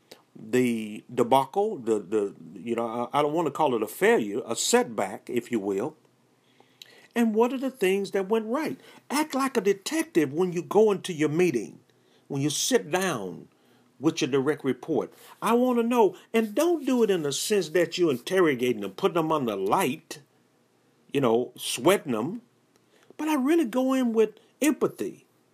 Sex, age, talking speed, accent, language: male, 50-69, 180 wpm, American, English